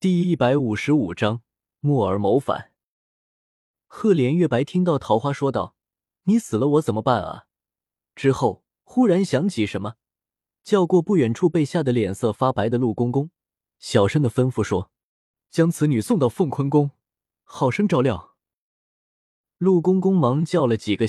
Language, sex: Chinese, male